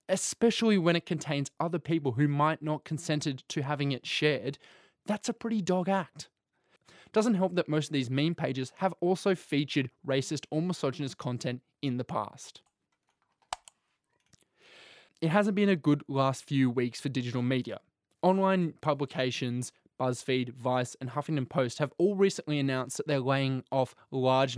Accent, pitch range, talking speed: Australian, 130-160 Hz, 155 wpm